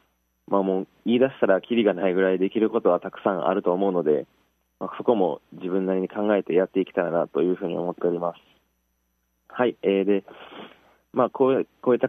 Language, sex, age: Japanese, male, 20-39